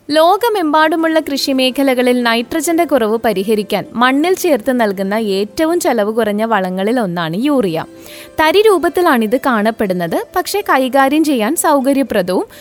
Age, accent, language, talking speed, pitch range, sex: 20-39, native, Malayalam, 105 wpm, 220-310 Hz, female